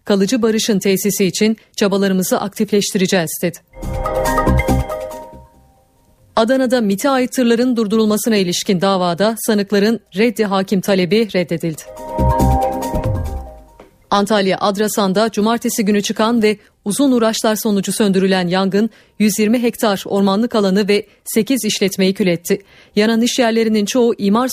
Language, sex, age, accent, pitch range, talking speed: Turkish, female, 40-59, native, 200-235 Hz, 105 wpm